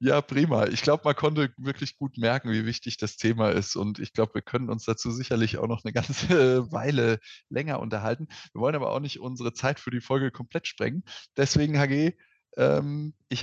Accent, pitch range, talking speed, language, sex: German, 115-140 Hz, 195 wpm, German, male